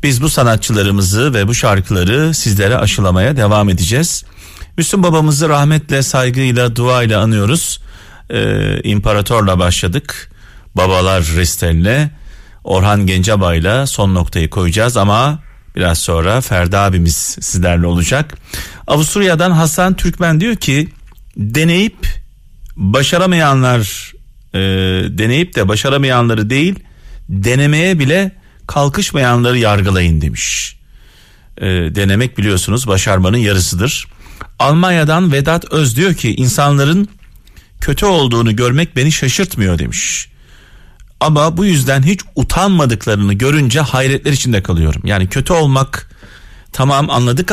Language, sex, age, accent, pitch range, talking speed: Turkish, male, 40-59, native, 95-150 Hz, 100 wpm